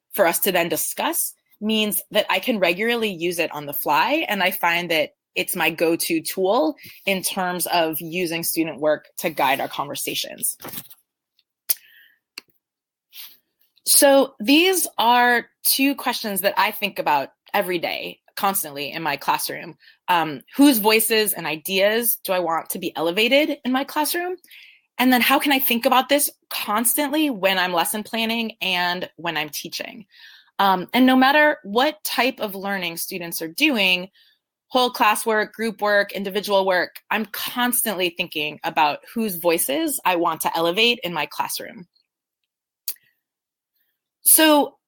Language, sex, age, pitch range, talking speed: English, female, 20-39, 180-260 Hz, 145 wpm